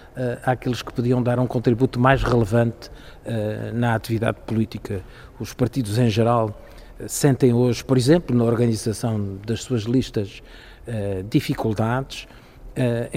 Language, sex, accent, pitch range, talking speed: Portuguese, male, Portuguese, 110-130 Hz, 130 wpm